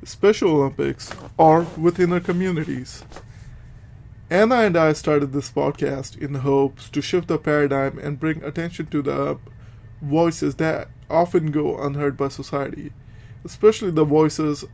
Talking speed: 135 wpm